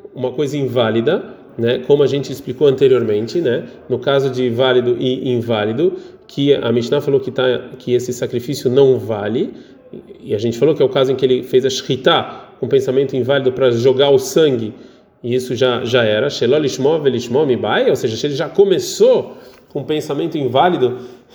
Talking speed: 175 wpm